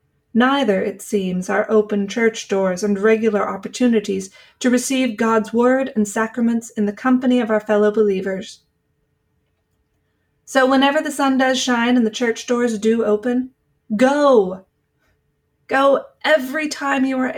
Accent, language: American, English